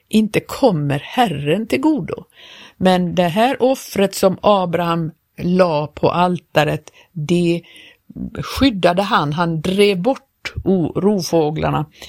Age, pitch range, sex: 50-69, 165-205 Hz, female